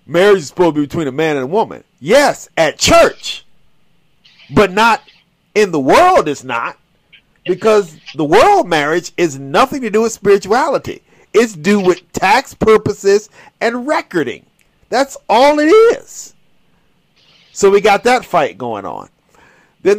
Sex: male